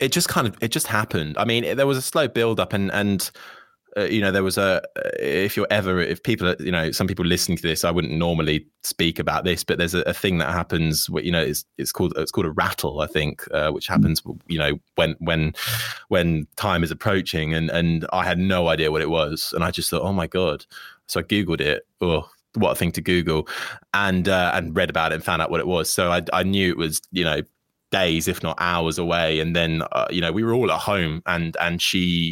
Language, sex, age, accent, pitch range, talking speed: English, male, 20-39, British, 80-100 Hz, 255 wpm